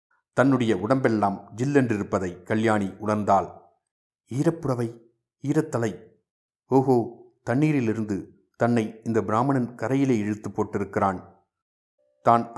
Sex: male